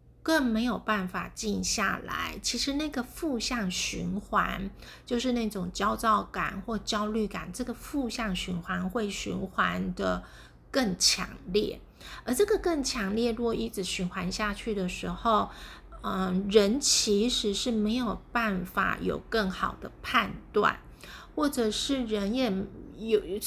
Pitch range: 190-235 Hz